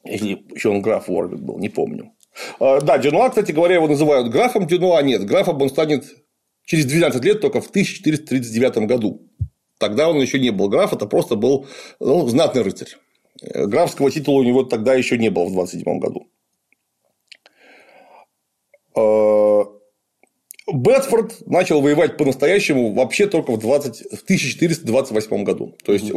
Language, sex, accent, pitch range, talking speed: Russian, male, native, 125-190 Hz, 130 wpm